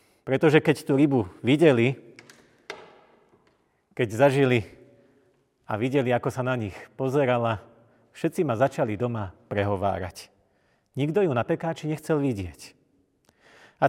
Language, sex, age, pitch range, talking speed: Slovak, male, 40-59, 115-145 Hz, 110 wpm